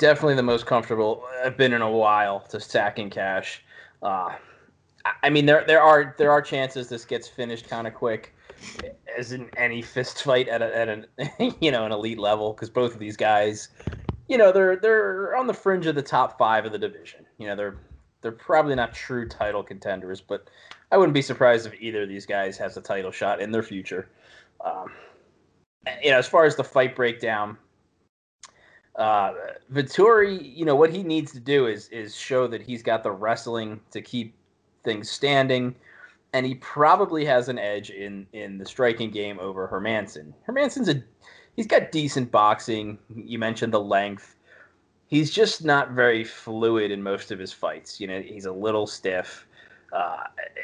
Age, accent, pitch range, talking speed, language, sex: 20-39, American, 105-140 Hz, 185 wpm, English, male